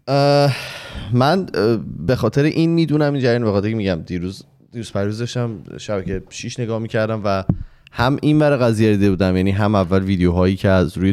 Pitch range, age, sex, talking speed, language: 90-125 Hz, 20-39, male, 180 wpm, Persian